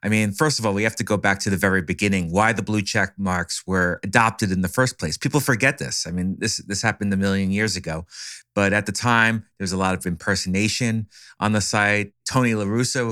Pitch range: 95-115 Hz